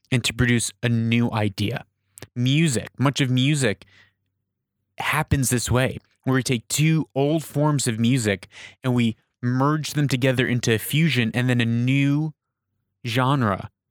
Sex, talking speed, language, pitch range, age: male, 145 wpm, English, 110-145 Hz, 20-39